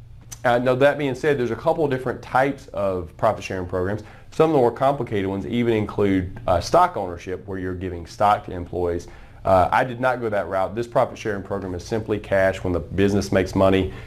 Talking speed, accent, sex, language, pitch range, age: 220 wpm, American, male, English, 90-120 Hz, 30-49